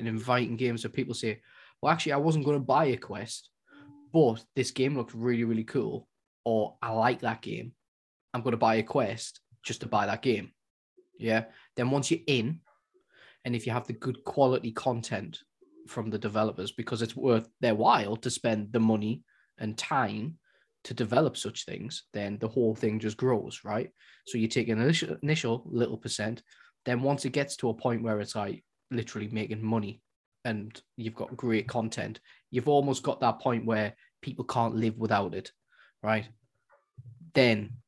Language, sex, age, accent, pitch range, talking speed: English, male, 20-39, British, 110-130 Hz, 180 wpm